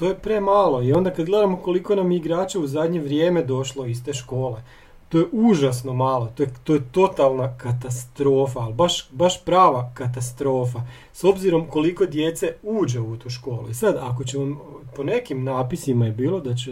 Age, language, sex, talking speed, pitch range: 40-59, Croatian, male, 180 wpm, 125-165 Hz